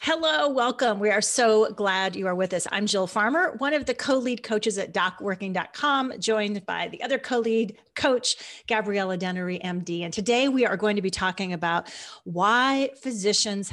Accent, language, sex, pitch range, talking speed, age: American, English, female, 185-240 Hz, 175 wpm, 30-49